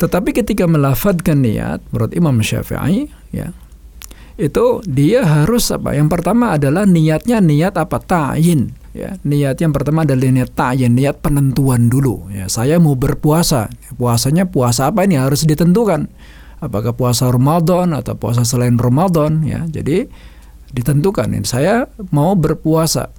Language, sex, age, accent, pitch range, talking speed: Indonesian, male, 50-69, native, 120-165 Hz, 135 wpm